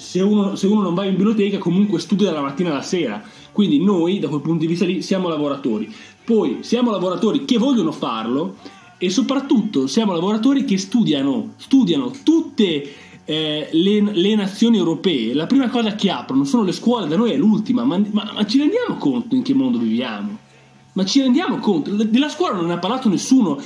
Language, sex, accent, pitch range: Italian, male, native, 165-240 Hz